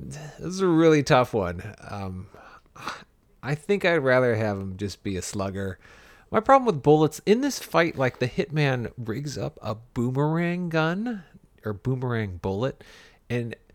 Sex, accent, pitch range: male, American, 105-155 Hz